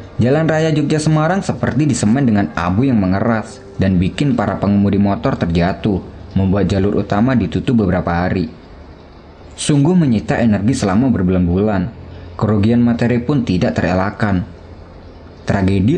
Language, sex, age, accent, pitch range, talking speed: Indonesian, male, 20-39, native, 95-120 Hz, 125 wpm